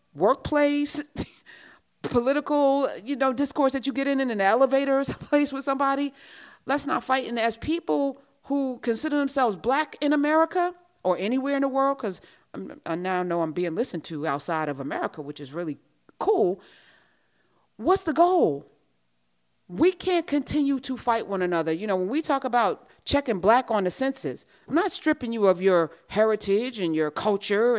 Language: English